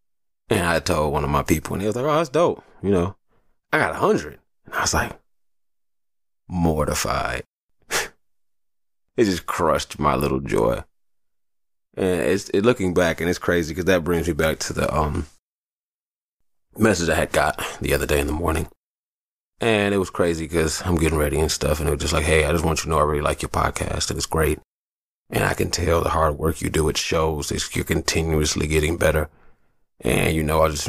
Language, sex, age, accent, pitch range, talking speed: English, male, 20-39, American, 75-85 Hz, 205 wpm